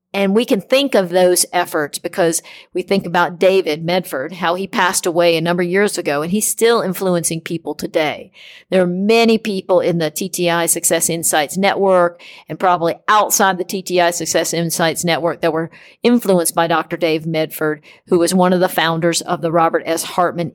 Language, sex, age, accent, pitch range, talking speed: English, female, 50-69, American, 165-185 Hz, 185 wpm